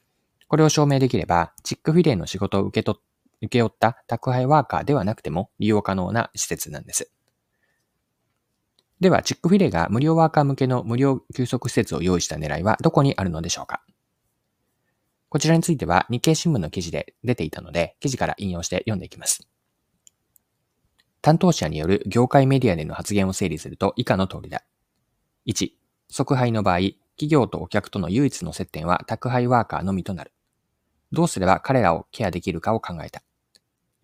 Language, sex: Japanese, male